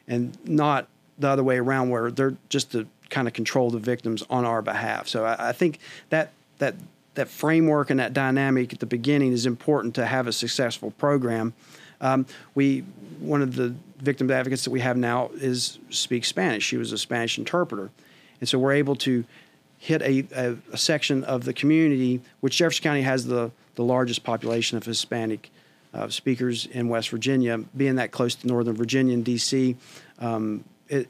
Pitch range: 120-150 Hz